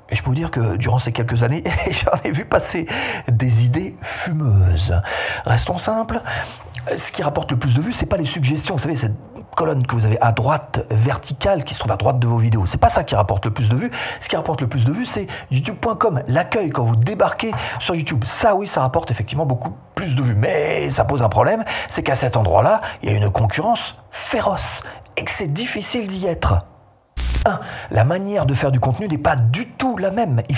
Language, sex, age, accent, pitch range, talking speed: French, male, 40-59, French, 110-145 Hz, 230 wpm